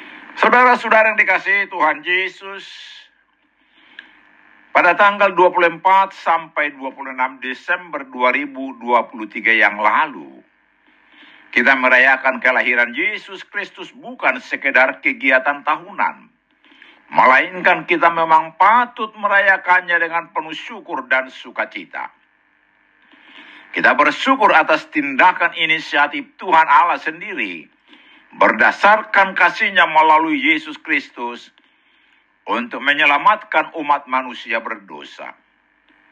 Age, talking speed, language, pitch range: 60-79, 85 wpm, Indonesian, 135-200 Hz